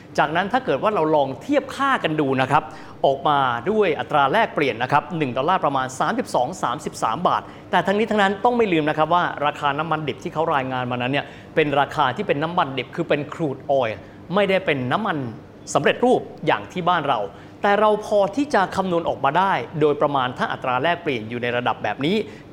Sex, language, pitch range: male, Thai, 145-220 Hz